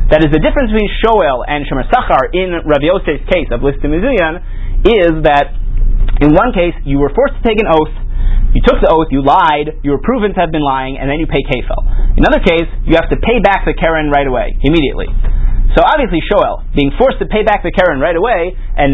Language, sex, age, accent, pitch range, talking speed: English, male, 30-49, American, 130-165 Hz, 220 wpm